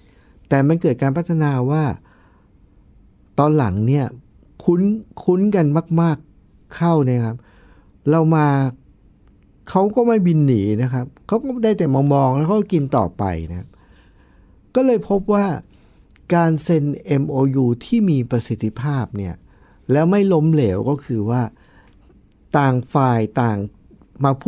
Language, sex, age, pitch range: Thai, male, 60-79, 100-155 Hz